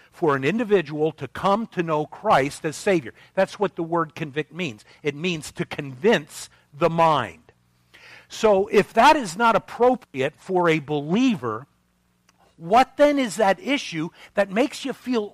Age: 50-69